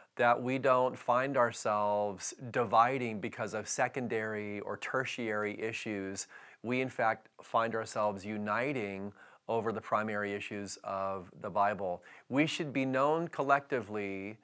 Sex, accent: male, American